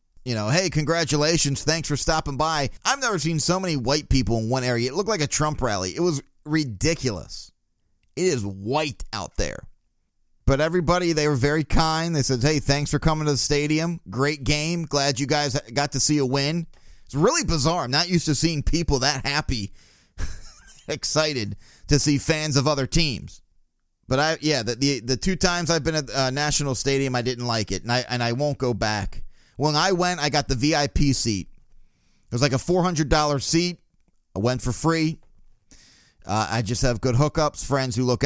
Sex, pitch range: male, 125-155 Hz